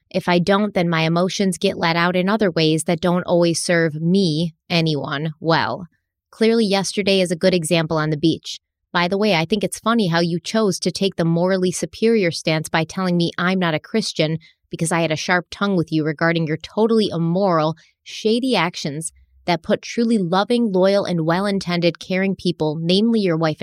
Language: English